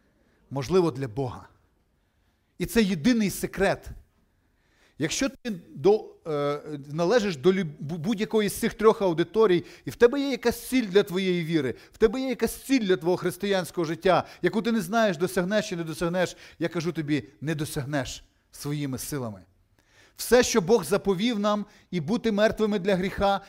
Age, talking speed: 40-59, 150 wpm